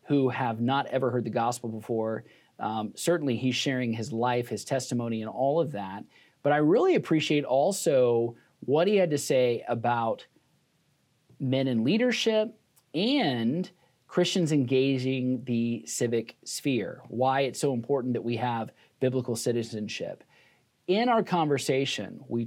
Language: English